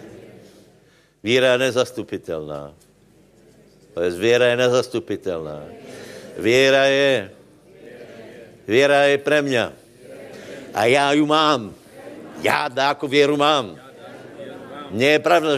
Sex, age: male, 60-79